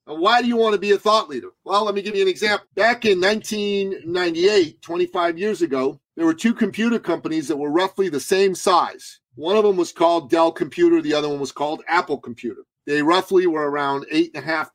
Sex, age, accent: male, 40-59, American